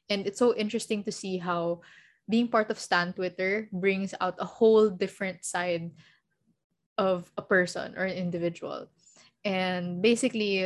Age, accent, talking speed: 20-39, Filipino, 145 wpm